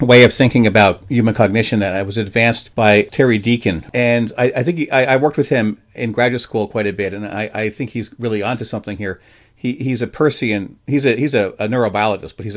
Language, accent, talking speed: English, American, 240 wpm